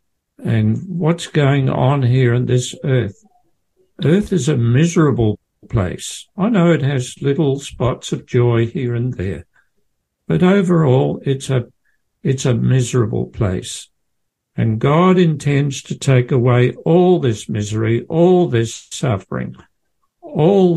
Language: English